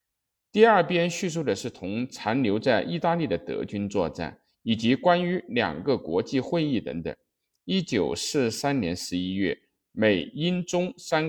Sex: male